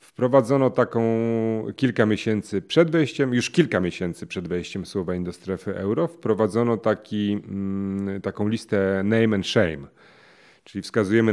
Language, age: Polish, 40-59